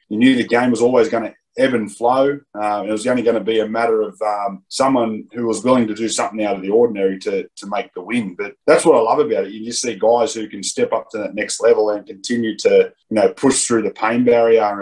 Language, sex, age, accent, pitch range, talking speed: English, male, 20-39, Australian, 100-120 Hz, 270 wpm